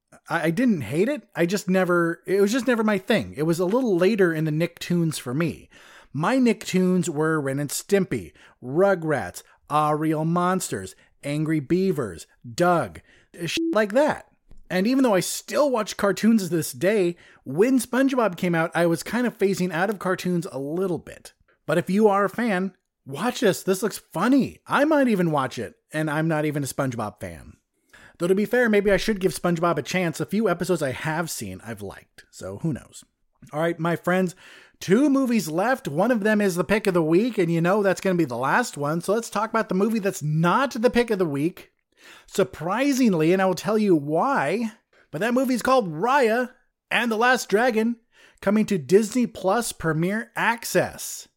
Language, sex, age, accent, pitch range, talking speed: English, male, 30-49, American, 160-215 Hz, 195 wpm